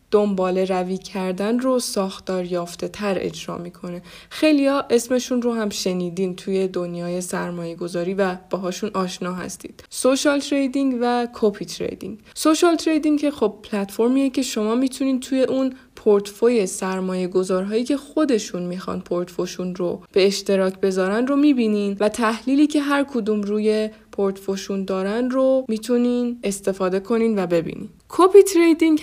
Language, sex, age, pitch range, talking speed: Persian, female, 20-39, 190-255 Hz, 135 wpm